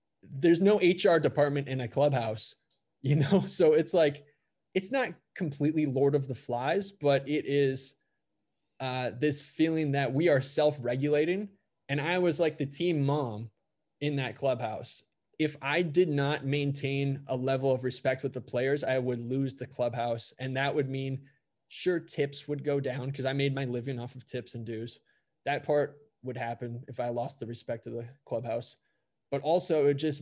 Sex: male